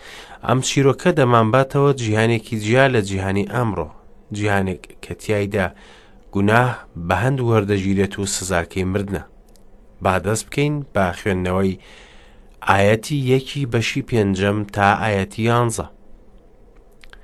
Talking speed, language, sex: 110 wpm, English, male